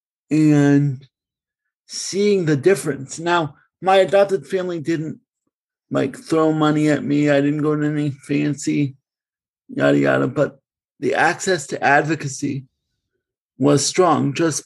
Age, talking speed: 50-69, 125 wpm